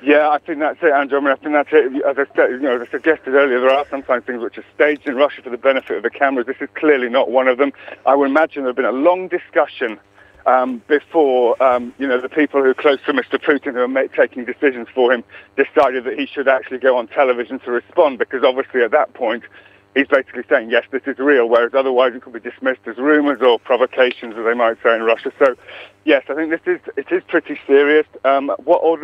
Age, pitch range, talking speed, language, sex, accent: 50-69, 130-150 Hz, 250 wpm, English, male, British